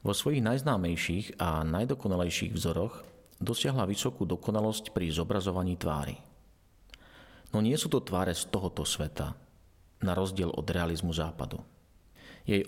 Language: Slovak